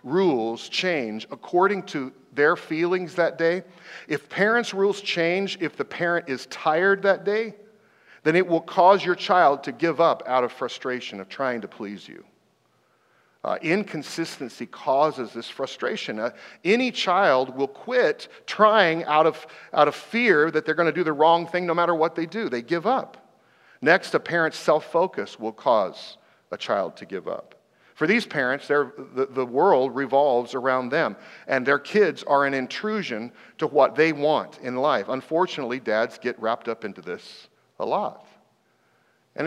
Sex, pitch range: male, 130-180 Hz